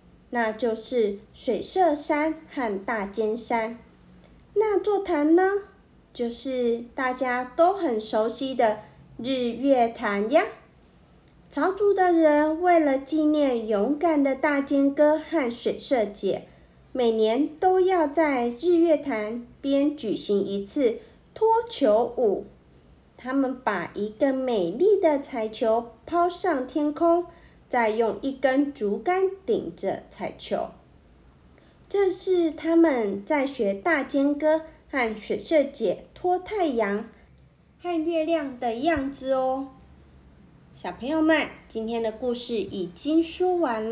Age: 50-69